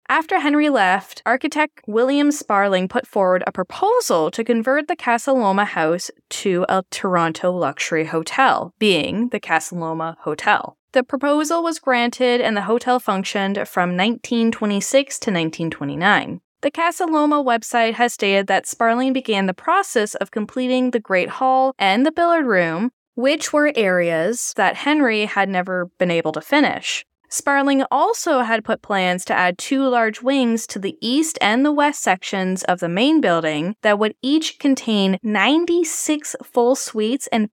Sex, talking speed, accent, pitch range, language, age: female, 155 wpm, American, 195-270 Hz, English, 10-29